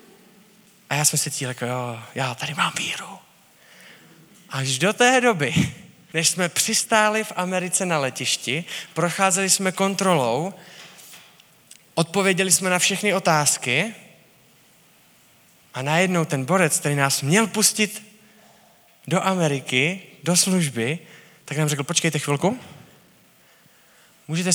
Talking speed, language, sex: 115 wpm, Czech, male